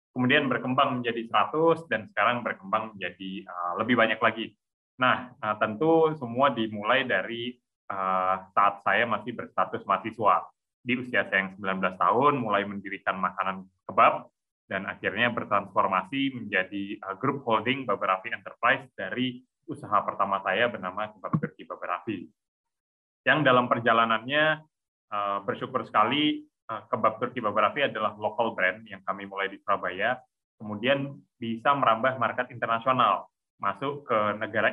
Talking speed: 125 wpm